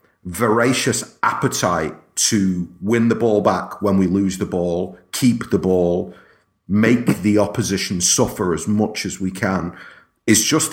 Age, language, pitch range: 40-59, English, 95-120 Hz